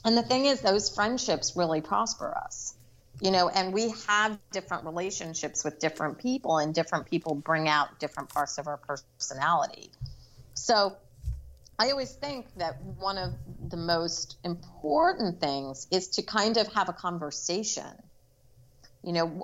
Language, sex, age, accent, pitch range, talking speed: English, female, 30-49, American, 155-210 Hz, 150 wpm